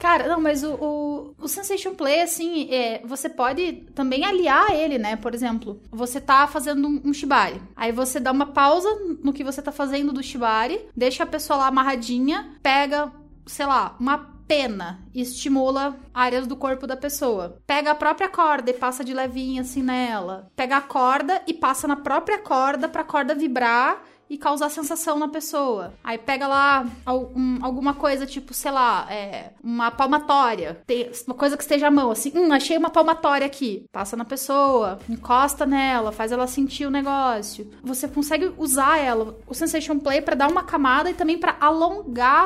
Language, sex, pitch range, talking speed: Portuguese, female, 255-315 Hz, 175 wpm